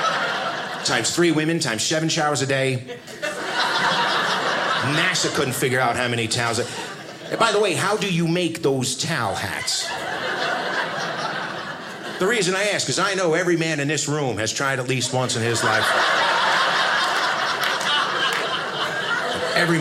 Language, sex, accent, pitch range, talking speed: English, male, American, 130-165 Hz, 140 wpm